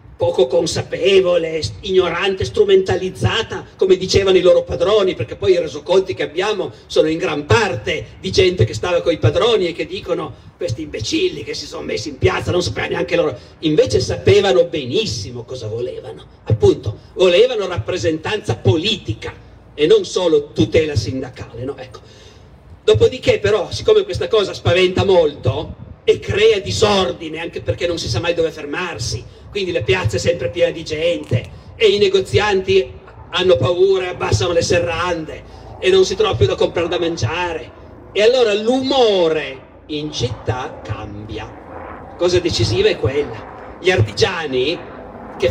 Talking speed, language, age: 150 wpm, Italian, 50-69